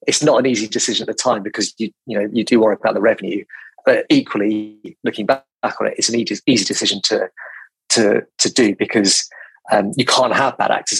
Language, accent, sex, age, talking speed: English, British, male, 30-49, 225 wpm